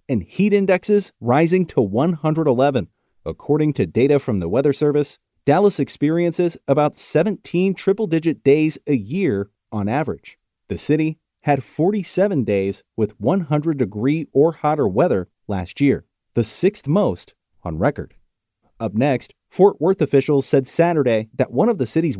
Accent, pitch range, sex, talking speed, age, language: American, 120-165 Hz, male, 145 wpm, 30-49, English